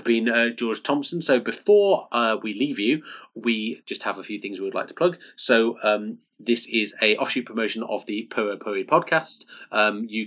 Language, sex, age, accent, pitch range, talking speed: English, male, 30-49, British, 105-130 Hz, 200 wpm